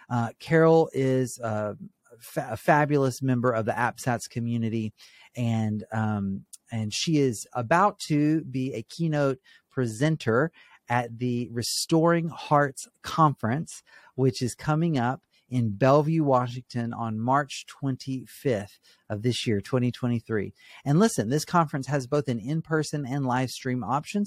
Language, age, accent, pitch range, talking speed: English, 40-59, American, 115-145 Hz, 135 wpm